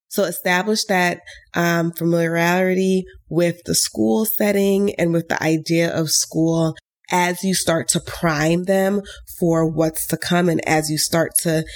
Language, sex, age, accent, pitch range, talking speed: English, female, 20-39, American, 160-195 Hz, 155 wpm